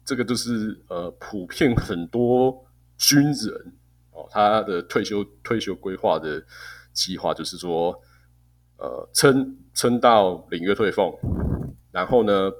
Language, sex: Chinese, male